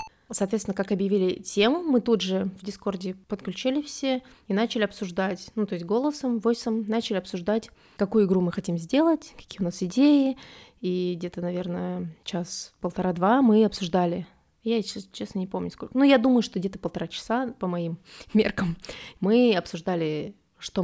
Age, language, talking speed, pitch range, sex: 20-39, Russian, 155 wpm, 190-240 Hz, female